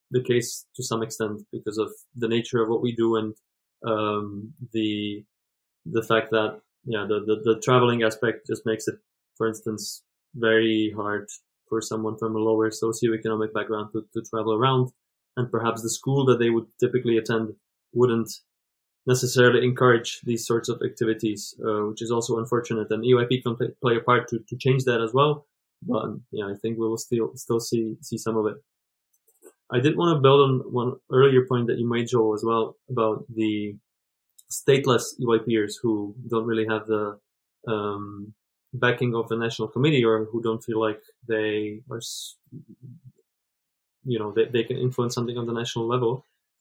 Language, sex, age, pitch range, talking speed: English, male, 20-39, 110-125 Hz, 180 wpm